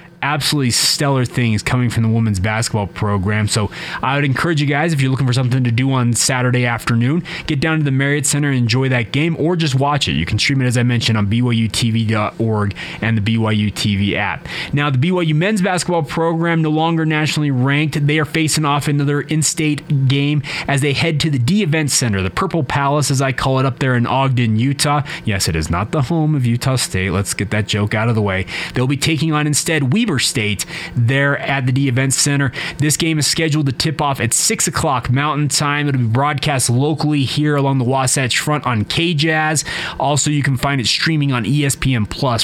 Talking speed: 215 wpm